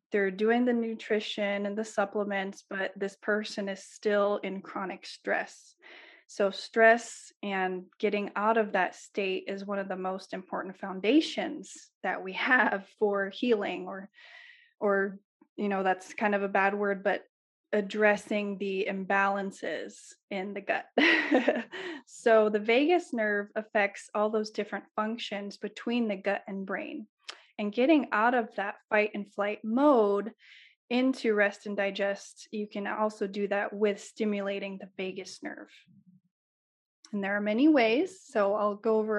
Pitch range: 200-230 Hz